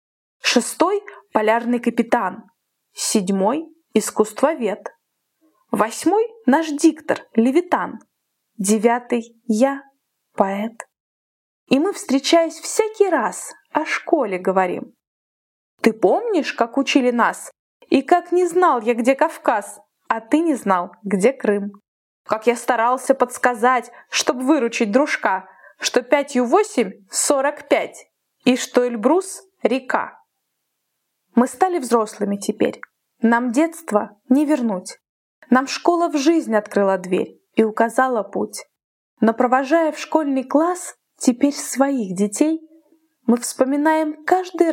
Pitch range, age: 225-315 Hz, 20-39